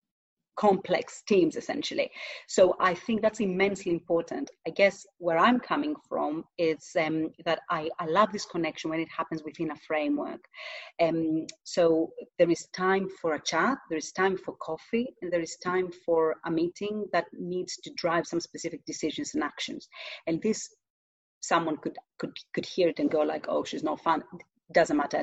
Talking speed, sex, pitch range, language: 180 wpm, female, 160-200 Hz, English